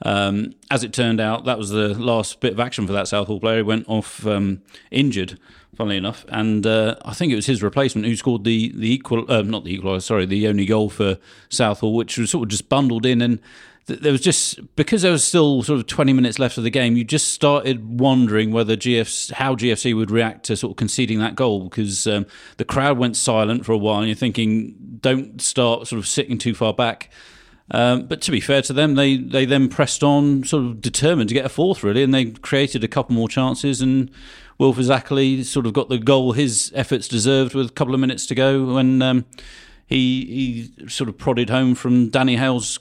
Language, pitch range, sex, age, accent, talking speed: English, 110-135 Hz, male, 40-59, British, 225 wpm